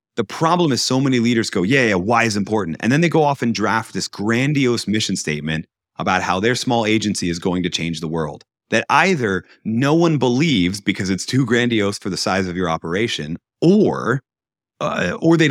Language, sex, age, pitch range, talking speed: English, male, 30-49, 95-125 Hz, 205 wpm